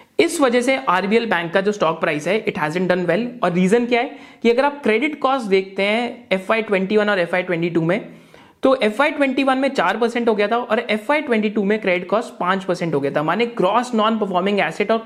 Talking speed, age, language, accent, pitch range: 225 wpm, 30-49, Hindi, native, 190-240 Hz